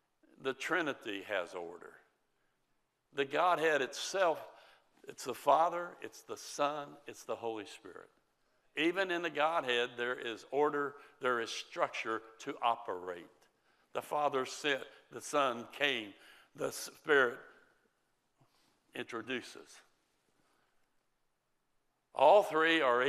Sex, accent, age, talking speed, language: male, American, 60-79, 105 wpm, English